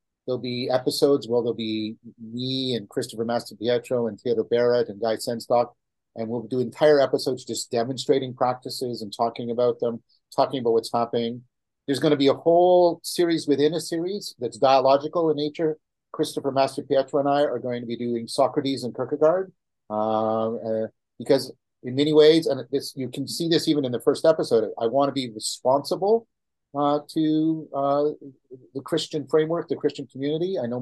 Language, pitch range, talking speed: English, 120-150 Hz, 180 wpm